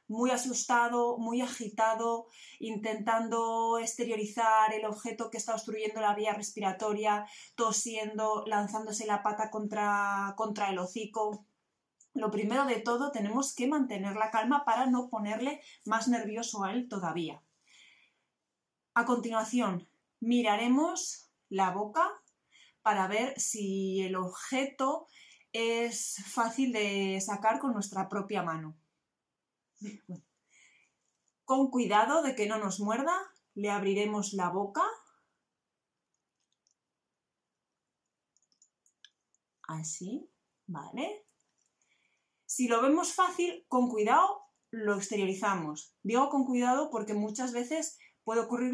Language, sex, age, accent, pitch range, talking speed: Spanish, female, 20-39, Spanish, 205-250 Hz, 105 wpm